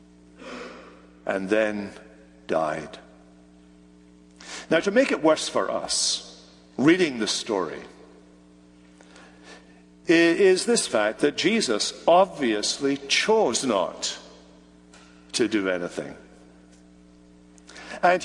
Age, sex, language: 60-79, male, English